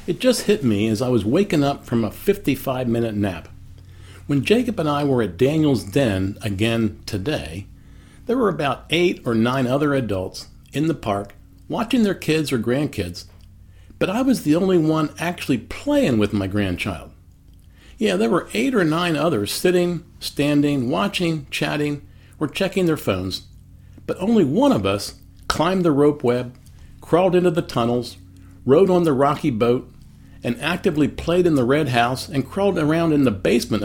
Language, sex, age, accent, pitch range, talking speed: English, male, 50-69, American, 95-155 Hz, 170 wpm